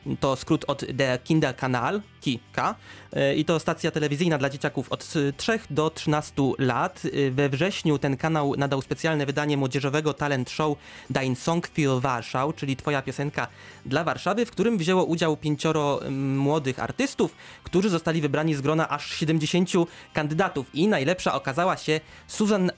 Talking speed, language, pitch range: 150 wpm, Polish, 140-170 Hz